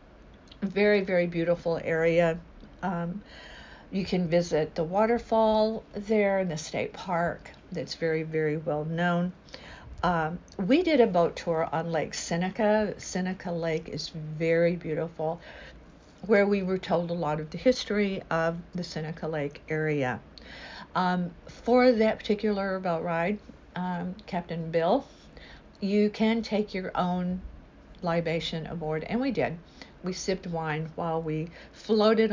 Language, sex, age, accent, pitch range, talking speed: English, female, 50-69, American, 160-195 Hz, 135 wpm